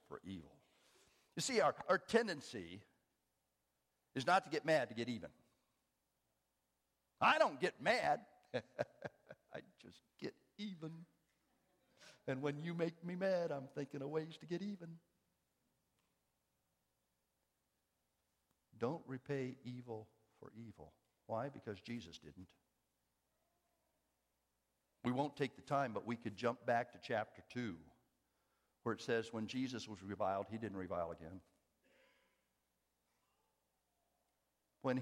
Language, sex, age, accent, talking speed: English, male, 60-79, American, 120 wpm